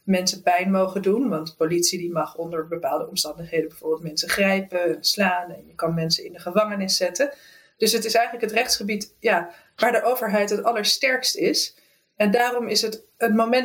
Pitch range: 195-235 Hz